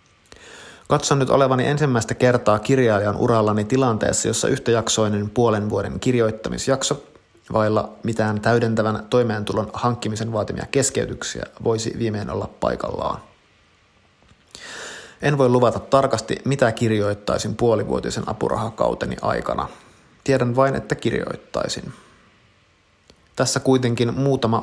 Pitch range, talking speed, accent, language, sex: 110-125 Hz, 95 wpm, native, Finnish, male